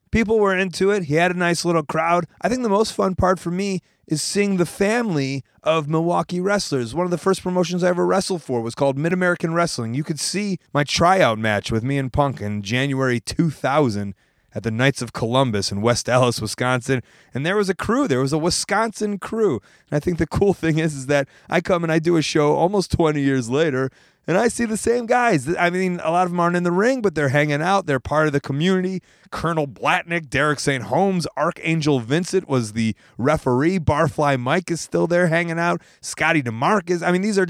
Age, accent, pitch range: 30-49, American, 130-180 Hz